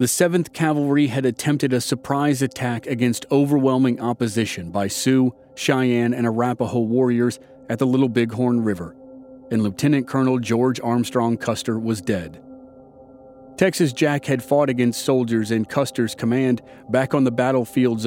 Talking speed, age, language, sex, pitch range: 145 wpm, 40-59, English, male, 120-145 Hz